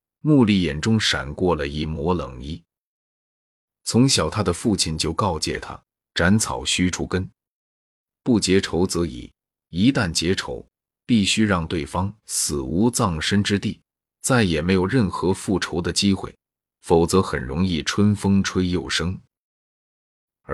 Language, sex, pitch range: Chinese, male, 85-105 Hz